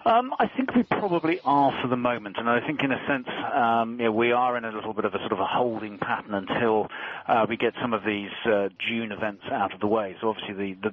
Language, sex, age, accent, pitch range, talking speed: English, male, 40-59, British, 105-125 Hz, 270 wpm